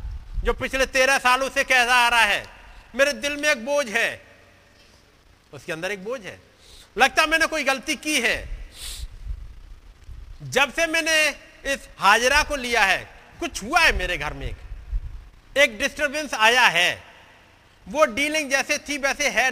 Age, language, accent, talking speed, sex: 50-69, Hindi, native, 155 wpm, male